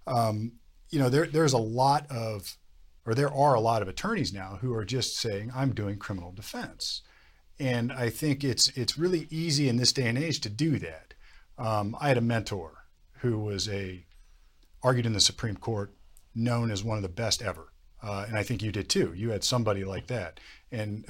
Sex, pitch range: male, 100-135 Hz